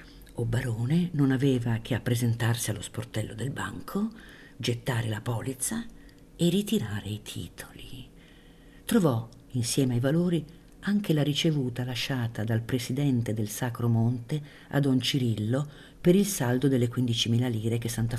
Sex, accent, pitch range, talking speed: female, native, 120-150 Hz, 140 wpm